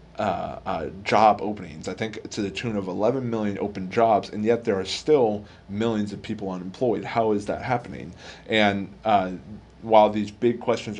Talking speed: 180 wpm